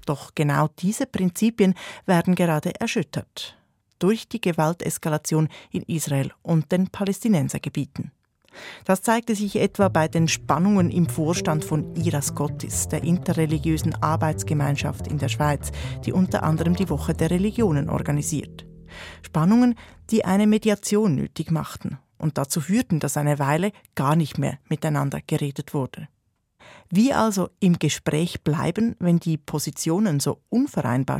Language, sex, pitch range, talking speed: German, female, 145-185 Hz, 135 wpm